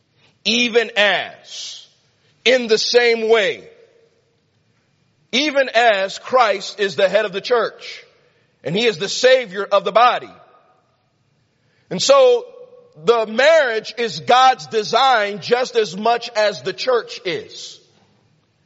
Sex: male